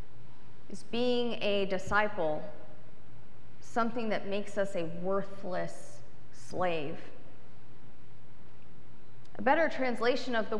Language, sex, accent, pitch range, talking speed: English, female, American, 195-250 Hz, 90 wpm